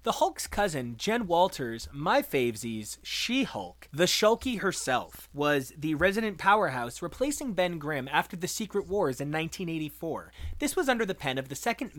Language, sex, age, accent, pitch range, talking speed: English, male, 30-49, American, 135-205 Hz, 160 wpm